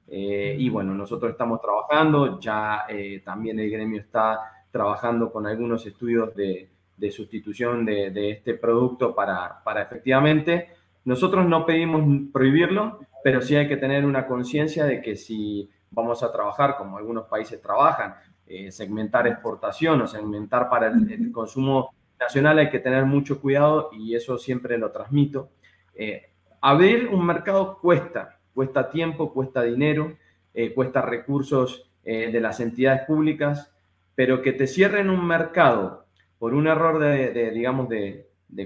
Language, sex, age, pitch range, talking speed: Spanish, male, 20-39, 115-150 Hz, 150 wpm